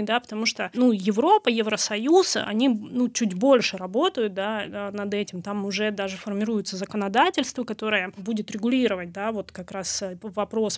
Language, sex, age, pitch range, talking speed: Russian, female, 20-39, 210-260 Hz, 150 wpm